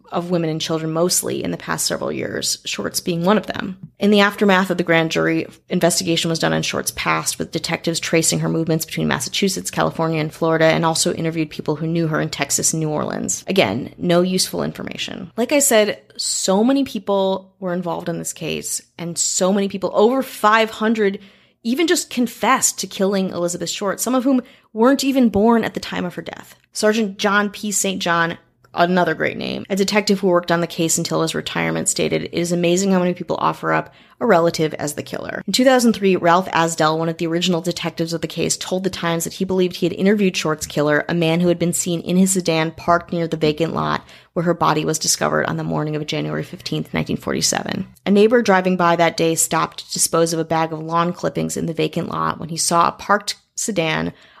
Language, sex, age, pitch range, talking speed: English, female, 20-39, 160-195 Hz, 215 wpm